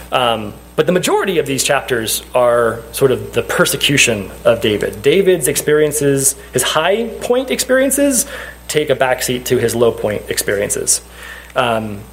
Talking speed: 145 wpm